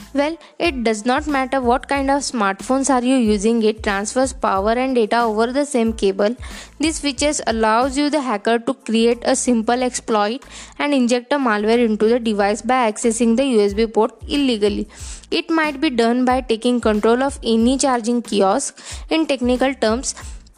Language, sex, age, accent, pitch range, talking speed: English, female, 20-39, Indian, 225-275 Hz, 170 wpm